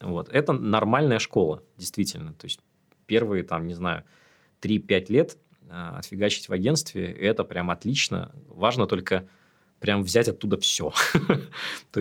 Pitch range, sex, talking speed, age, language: 95-120 Hz, male, 125 wpm, 20-39, Russian